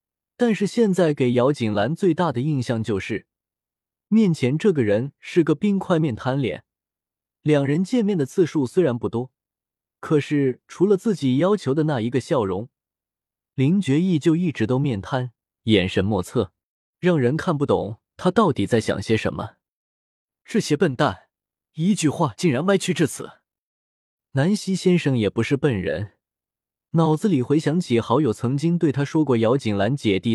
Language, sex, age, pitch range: Chinese, male, 20-39, 110-170 Hz